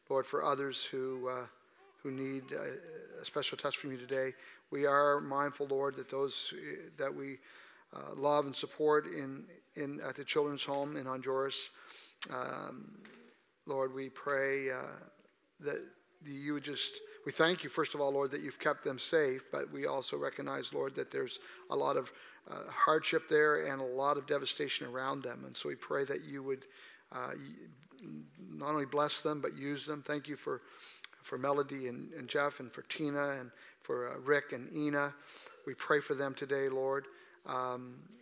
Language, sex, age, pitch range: English, male, 50-69, 135-170 Hz